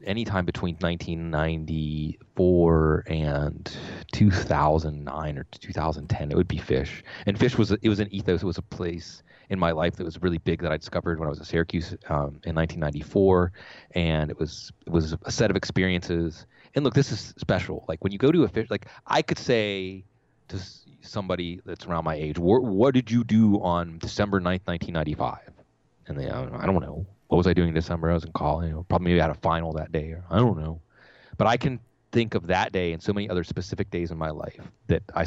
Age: 30-49